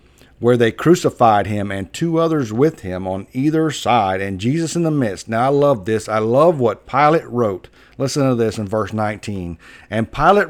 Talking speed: 195 wpm